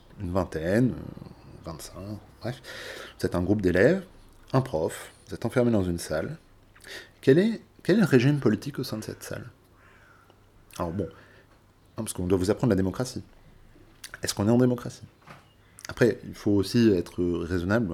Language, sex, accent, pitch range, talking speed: French, male, French, 90-115 Hz, 160 wpm